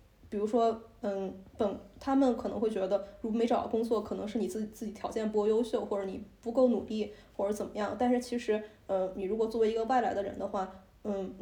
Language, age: Chinese, 20-39